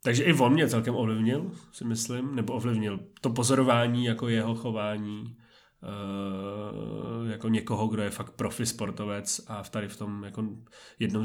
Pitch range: 105-115 Hz